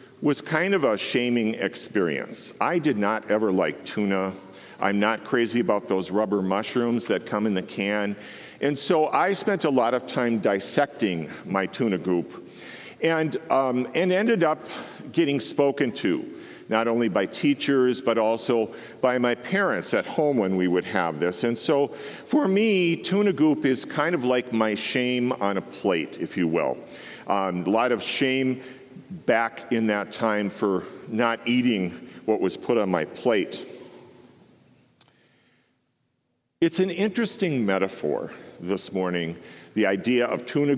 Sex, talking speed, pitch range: male, 155 wpm, 110-150 Hz